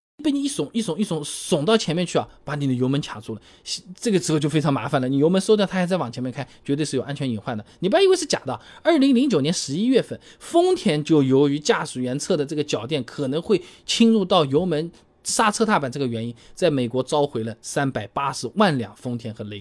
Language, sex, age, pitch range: Chinese, male, 20-39, 130-210 Hz